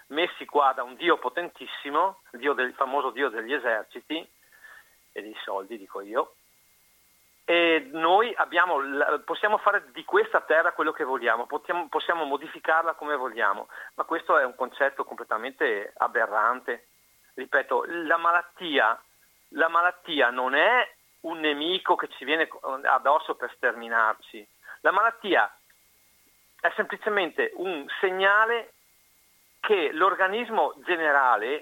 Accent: native